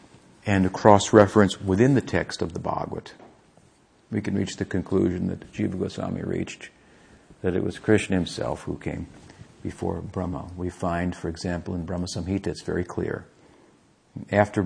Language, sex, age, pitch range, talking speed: English, male, 50-69, 80-95 Hz, 155 wpm